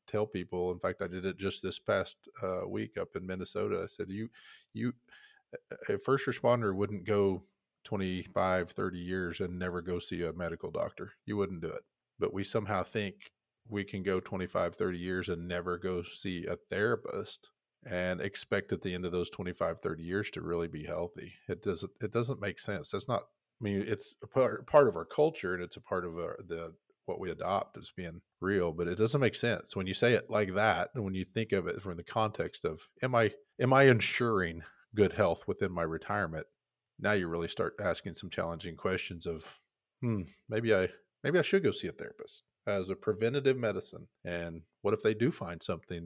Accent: American